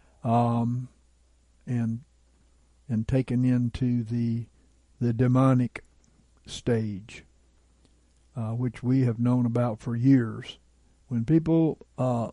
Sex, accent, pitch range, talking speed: male, American, 105-135 Hz, 95 wpm